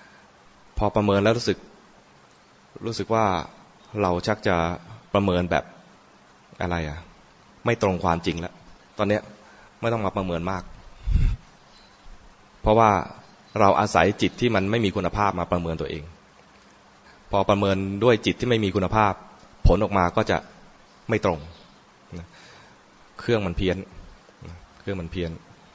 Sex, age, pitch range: male, 20-39, 85-105 Hz